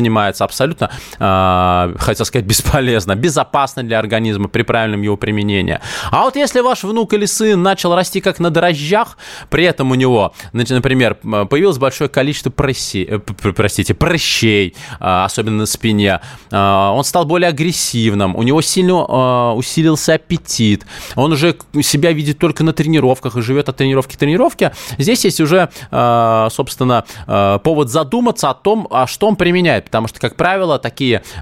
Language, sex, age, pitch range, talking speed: Russian, male, 20-39, 110-165 Hz, 145 wpm